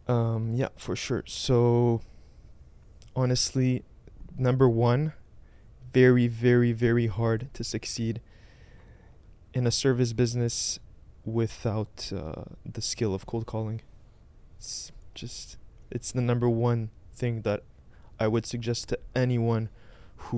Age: 20-39